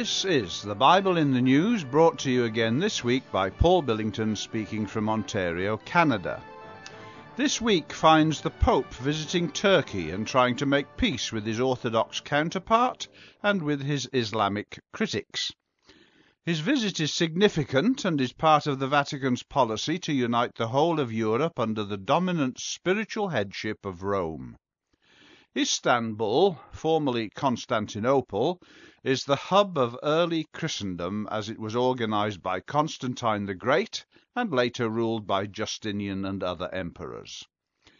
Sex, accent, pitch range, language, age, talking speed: male, British, 110-160 Hz, English, 50-69, 140 wpm